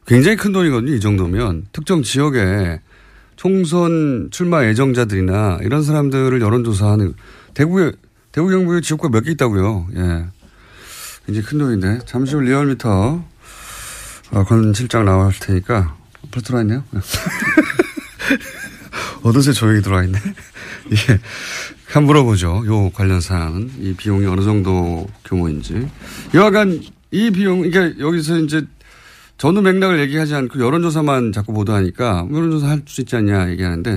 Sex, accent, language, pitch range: male, native, Korean, 100-145 Hz